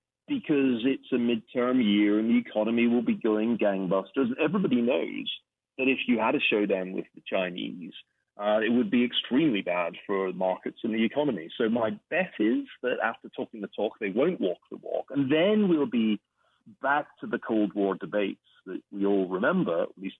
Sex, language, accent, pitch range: male, English, British, 105-150 Hz